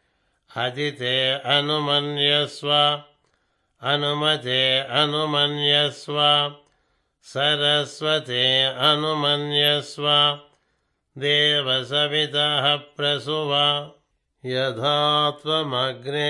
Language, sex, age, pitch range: Telugu, male, 60-79, 140-150 Hz